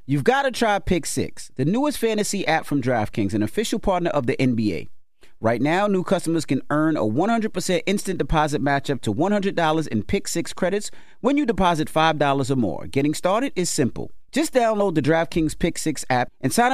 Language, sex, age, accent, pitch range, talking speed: English, male, 30-49, American, 145-205 Hz, 195 wpm